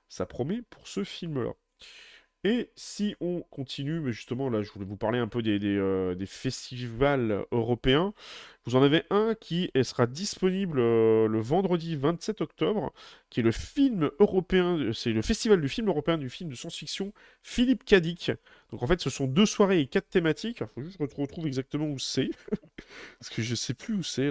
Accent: French